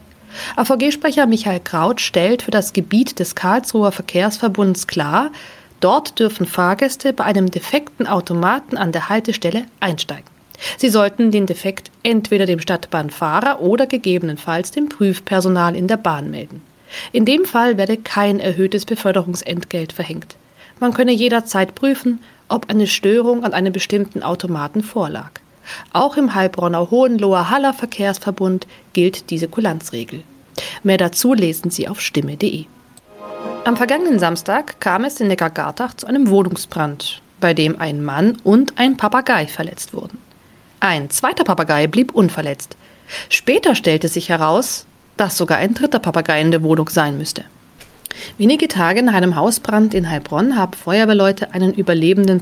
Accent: German